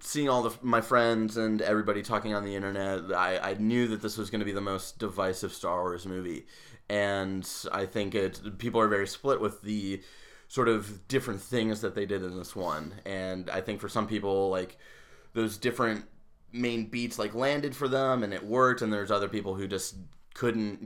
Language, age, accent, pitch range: English, 20-39, American, 95-110 Hz